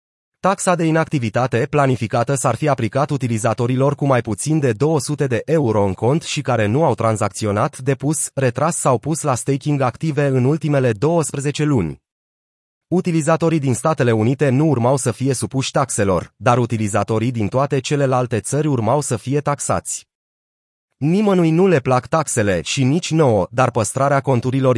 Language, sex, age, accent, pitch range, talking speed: Romanian, male, 30-49, native, 115-150 Hz, 155 wpm